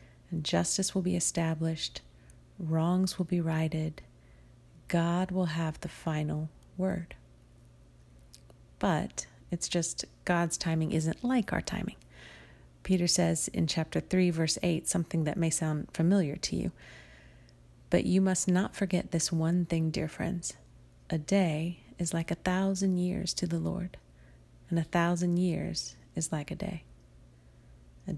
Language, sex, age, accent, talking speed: English, female, 30-49, American, 145 wpm